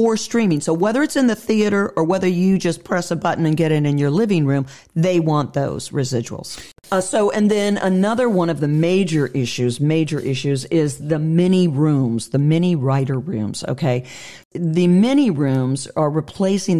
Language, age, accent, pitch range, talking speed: English, 50-69, American, 145-190 Hz, 185 wpm